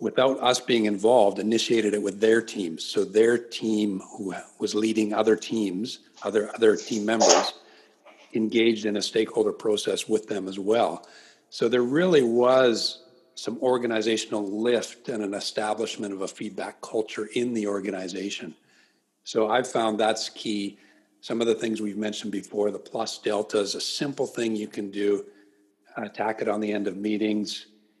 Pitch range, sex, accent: 105-120 Hz, male, American